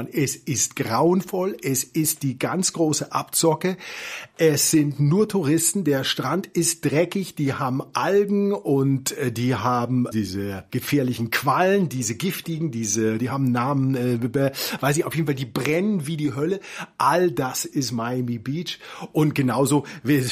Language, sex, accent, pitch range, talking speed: English, male, German, 130-180 Hz, 150 wpm